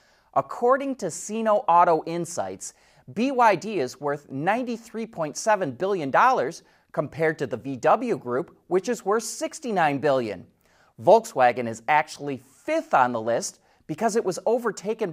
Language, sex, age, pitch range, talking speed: English, male, 30-49, 140-225 Hz, 125 wpm